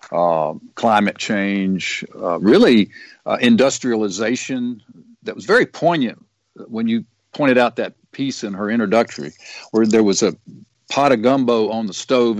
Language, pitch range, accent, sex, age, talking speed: English, 100-135 Hz, American, male, 50-69, 145 wpm